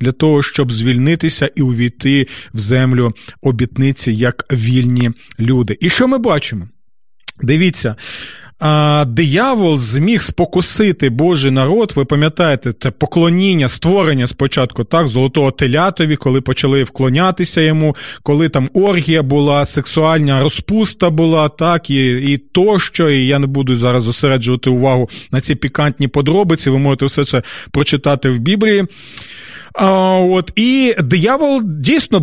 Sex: male